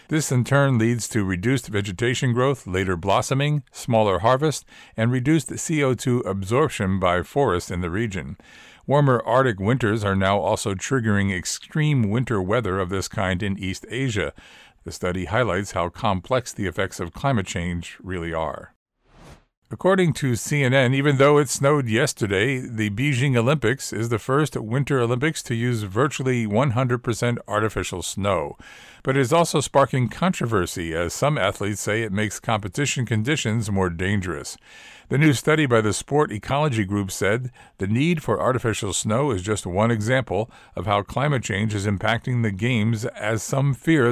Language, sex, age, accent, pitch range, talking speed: English, male, 50-69, American, 100-135 Hz, 160 wpm